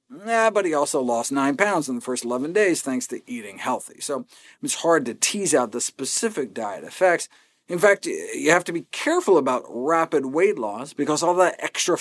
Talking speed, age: 205 wpm, 50-69